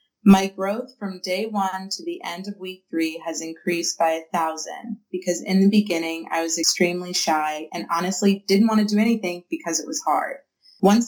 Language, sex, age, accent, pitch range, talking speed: English, female, 20-39, American, 170-205 Hz, 195 wpm